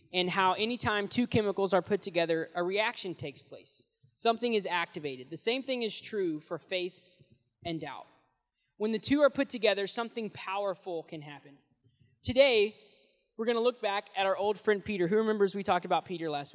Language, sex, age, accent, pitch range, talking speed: English, male, 20-39, American, 160-210 Hz, 190 wpm